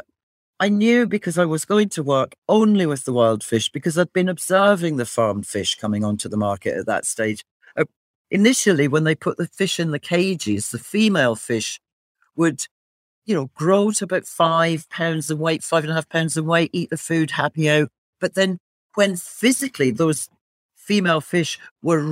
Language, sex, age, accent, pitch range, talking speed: English, male, 40-59, British, 120-185 Hz, 190 wpm